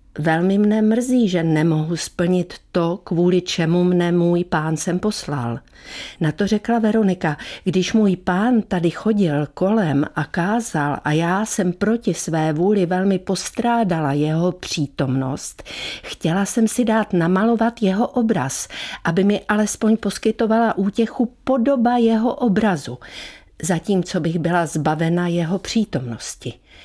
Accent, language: native, Czech